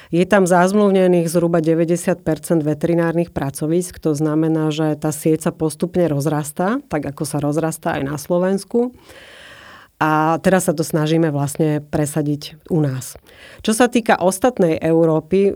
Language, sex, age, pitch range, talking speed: Slovak, female, 40-59, 155-180 Hz, 135 wpm